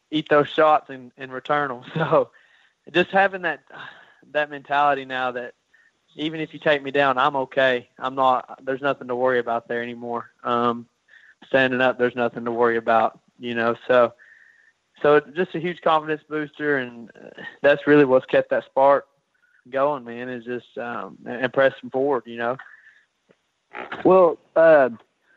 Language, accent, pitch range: English, American, 130-165 Hz